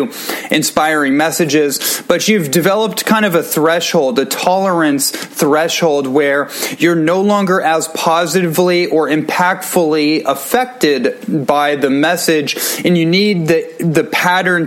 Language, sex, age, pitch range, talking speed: English, male, 20-39, 140-165 Hz, 125 wpm